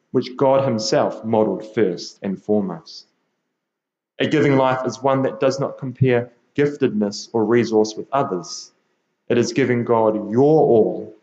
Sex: male